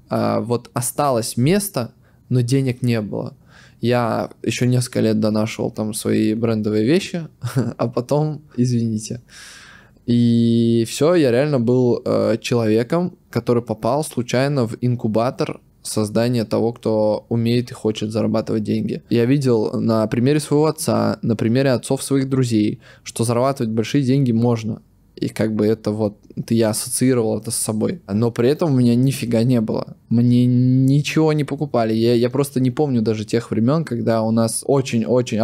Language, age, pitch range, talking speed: Russian, 20-39, 110-130 Hz, 150 wpm